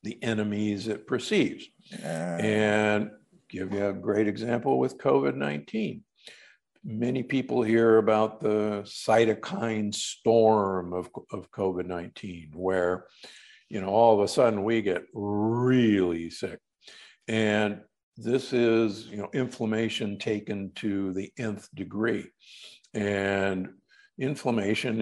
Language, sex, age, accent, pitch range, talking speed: English, male, 60-79, American, 100-140 Hz, 110 wpm